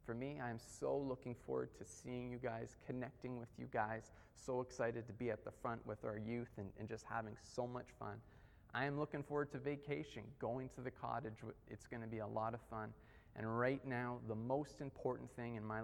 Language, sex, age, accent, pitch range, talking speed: English, male, 30-49, American, 110-130 Hz, 225 wpm